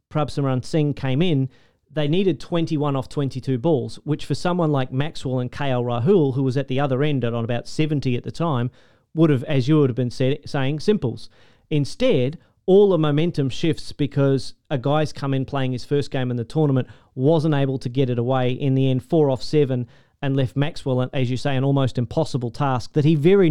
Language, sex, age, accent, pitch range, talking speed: English, male, 40-59, Australian, 130-150 Hz, 205 wpm